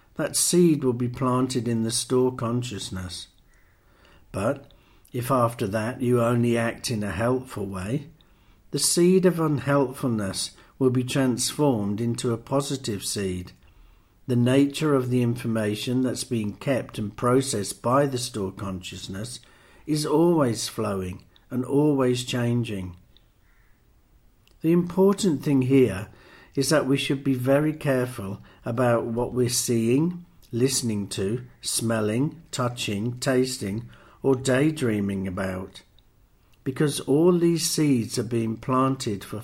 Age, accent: 60-79, British